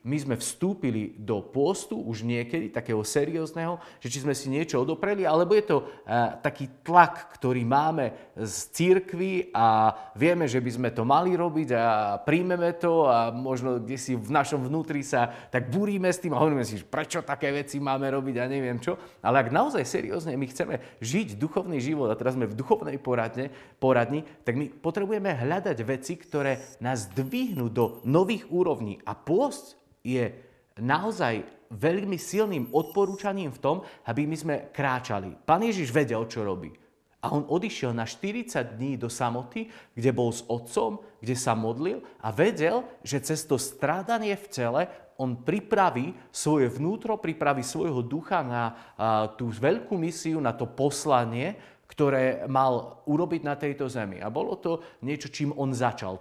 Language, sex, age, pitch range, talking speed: Slovak, male, 30-49, 120-165 Hz, 165 wpm